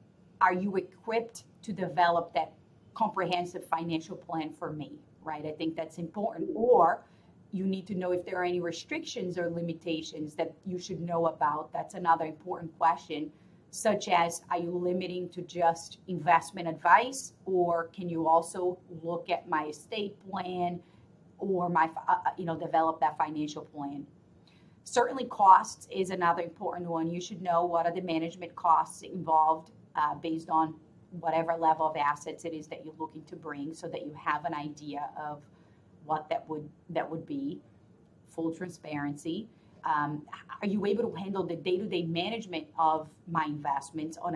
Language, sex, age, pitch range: English, female, 40-59, 155-180 Hz